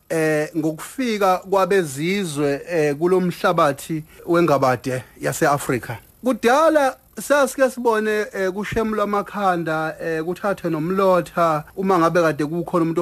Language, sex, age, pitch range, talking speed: English, male, 30-49, 160-195 Hz, 90 wpm